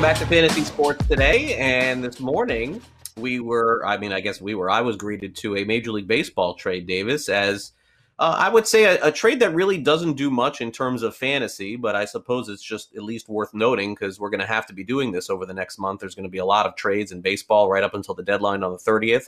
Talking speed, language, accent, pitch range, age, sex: 260 wpm, English, American, 100-125 Hz, 30-49, male